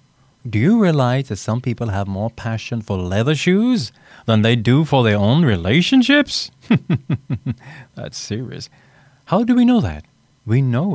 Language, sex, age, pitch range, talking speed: English, male, 30-49, 105-140 Hz, 155 wpm